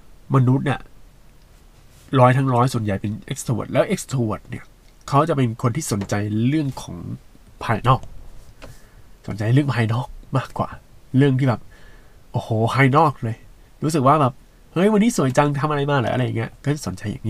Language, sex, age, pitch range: Thai, male, 20-39, 110-140 Hz